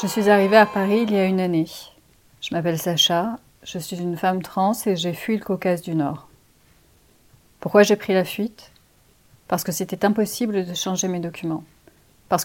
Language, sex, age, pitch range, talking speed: French, female, 30-49, 175-205 Hz, 190 wpm